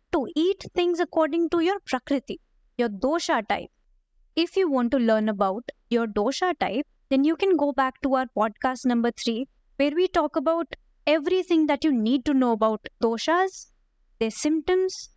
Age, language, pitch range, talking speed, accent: 20-39, Hindi, 235-310 Hz, 170 wpm, native